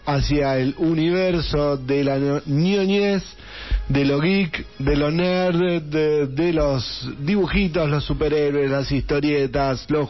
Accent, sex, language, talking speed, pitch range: Argentinian, male, Spanish, 125 wpm, 145-195 Hz